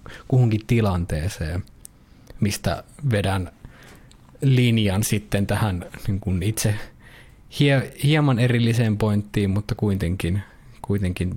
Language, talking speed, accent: Finnish, 75 wpm, native